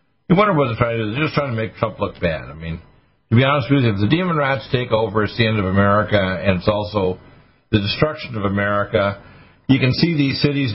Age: 50-69